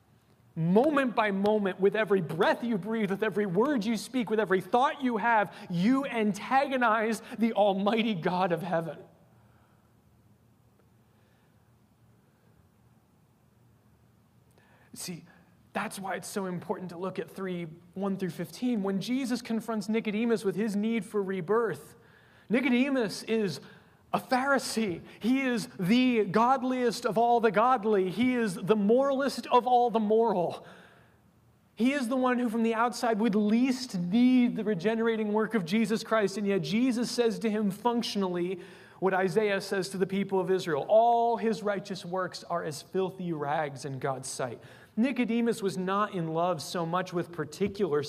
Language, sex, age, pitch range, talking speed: English, male, 30-49, 175-230 Hz, 150 wpm